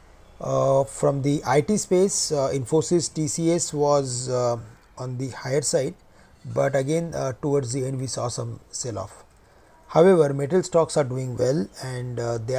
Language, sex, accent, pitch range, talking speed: English, male, Indian, 120-145 Hz, 160 wpm